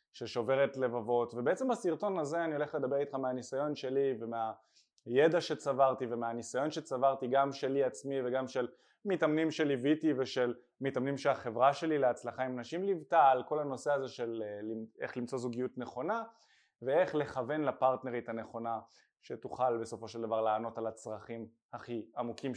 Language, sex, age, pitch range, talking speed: Hebrew, male, 20-39, 125-185 Hz, 140 wpm